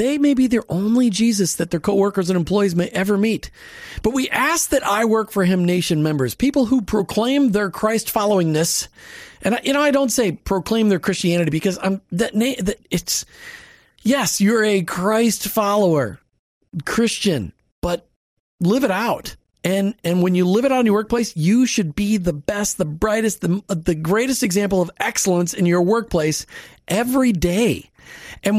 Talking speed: 175 wpm